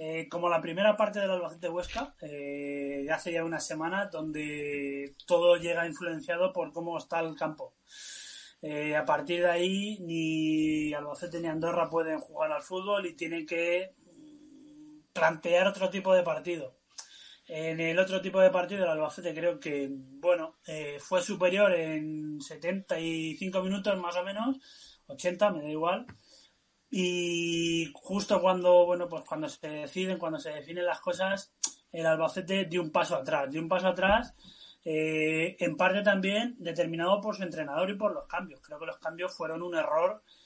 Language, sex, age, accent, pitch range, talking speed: Spanish, male, 20-39, Spanish, 155-185 Hz, 165 wpm